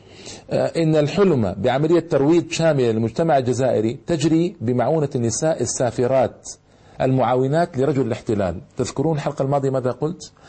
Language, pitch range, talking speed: Arabic, 130-170 Hz, 110 wpm